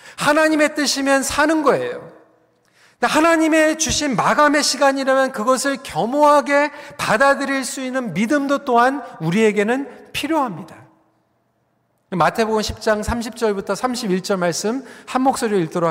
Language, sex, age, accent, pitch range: Korean, male, 40-59, native, 205-280 Hz